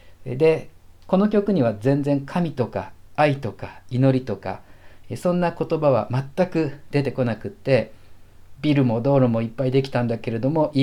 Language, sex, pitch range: Japanese, male, 100-135 Hz